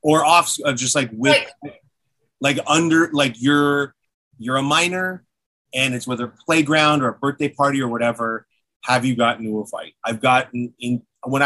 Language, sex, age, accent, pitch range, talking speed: English, male, 30-49, American, 120-140 Hz, 175 wpm